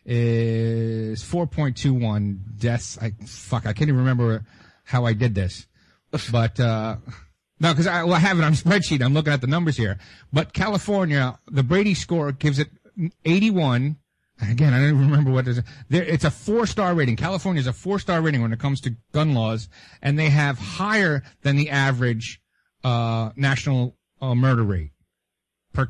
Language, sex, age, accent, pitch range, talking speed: English, male, 40-59, American, 115-155 Hz, 180 wpm